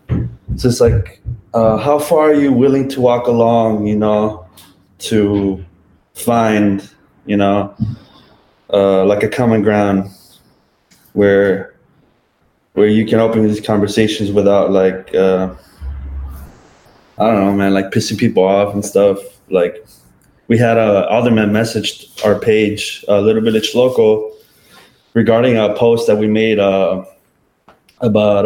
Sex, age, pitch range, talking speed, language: male, 20-39, 100-120 Hz, 140 wpm, English